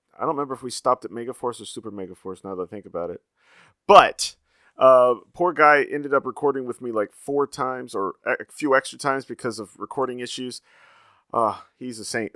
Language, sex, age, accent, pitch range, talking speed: English, male, 30-49, American, 115-150 Hz, 205 wpm